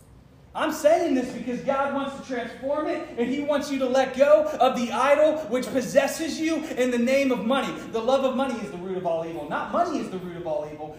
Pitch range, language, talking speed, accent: 230-280 Hz, English, 245 wpm, American